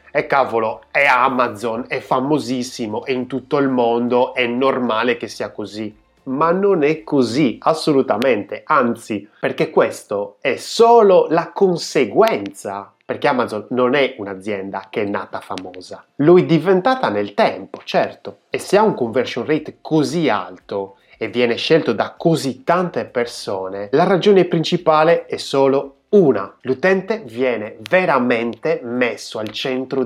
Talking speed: 140 wpm